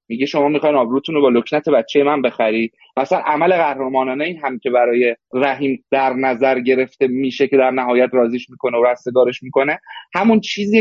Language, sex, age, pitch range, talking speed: Persian, male, 30-49, 130-165 Hz, 180 wpm